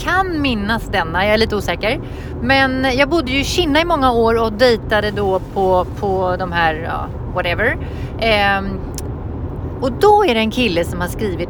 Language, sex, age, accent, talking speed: English, female, 30-49, Swedish, 185 wpm